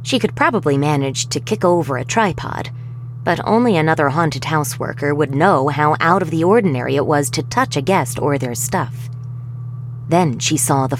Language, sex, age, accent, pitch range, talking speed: English, female, 20-39, American, 125-170 Hz, 185 wpm